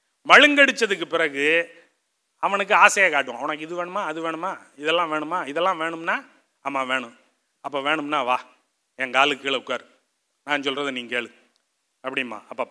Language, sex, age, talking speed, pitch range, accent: Tamil, male, 30-49, 130 wpm, 170-245 Hz, native